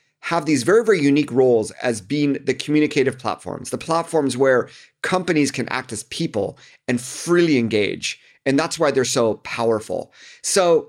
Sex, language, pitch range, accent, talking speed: male, English, 130-175 Hz, American, 160 wpm